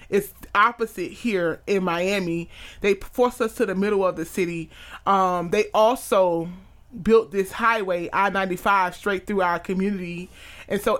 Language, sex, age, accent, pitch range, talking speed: English, male, 30-49, American, 180-210 Hz, 145 wpm